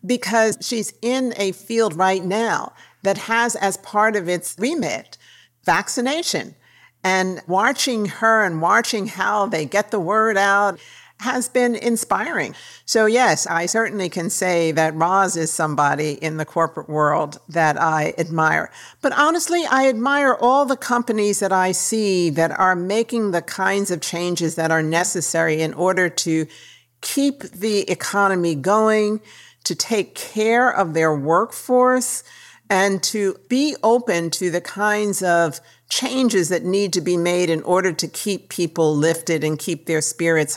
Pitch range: 160-220 Hz